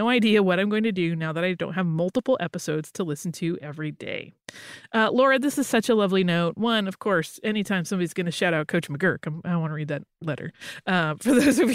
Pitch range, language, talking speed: 170-235 Hz, English, 245 wpm